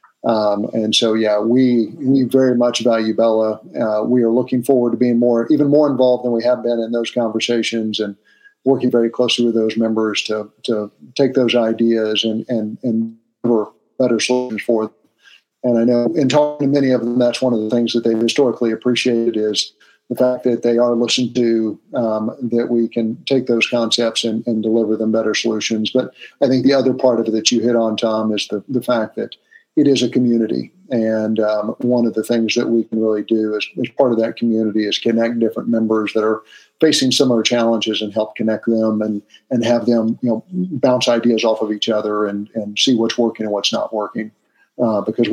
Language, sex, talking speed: English, male, 215 wpm